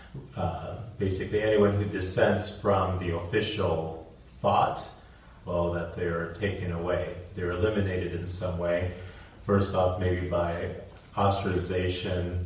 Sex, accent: male, American